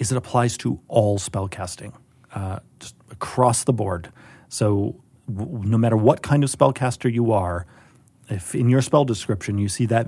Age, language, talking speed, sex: 30-49, English, 160 wpm, male